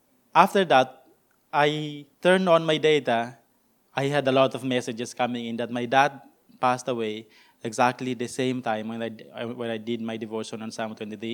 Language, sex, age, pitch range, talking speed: English, male, 20-39, 115-140 Hz, 180 wpm